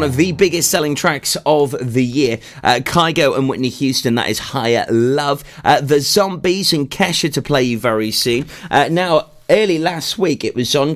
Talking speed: 195 wpm